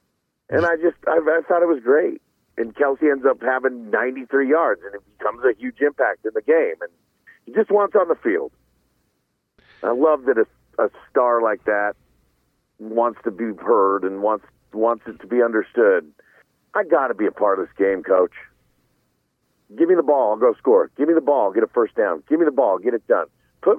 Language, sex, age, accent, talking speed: English, male, 50-69, American, 210 wpm